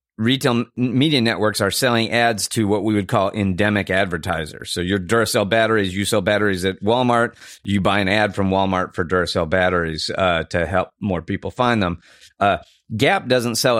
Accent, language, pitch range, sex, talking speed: American, English, 90-115 Hz, male, 185 wpm